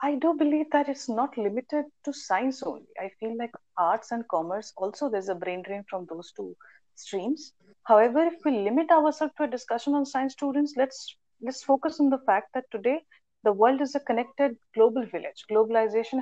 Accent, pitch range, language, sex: native, 205-255 Hz, Hindi, female